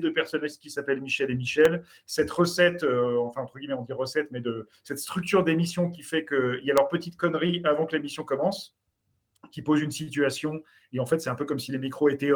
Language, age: French, 40-59